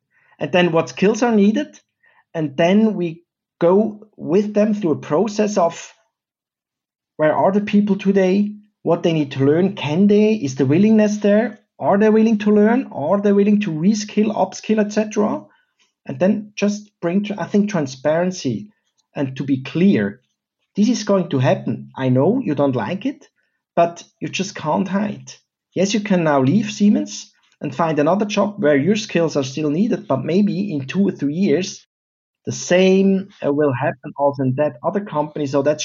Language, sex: English, male